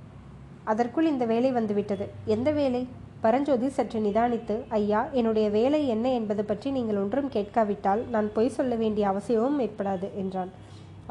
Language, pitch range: Tamil, 210-250 Hz